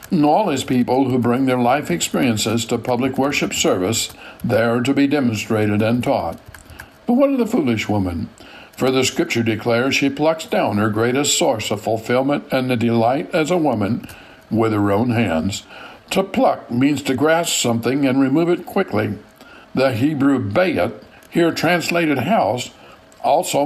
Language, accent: English, American